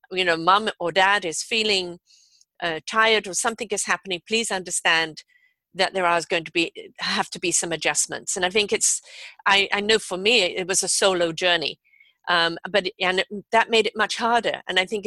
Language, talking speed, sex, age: English, 205 wpm, female, 50-69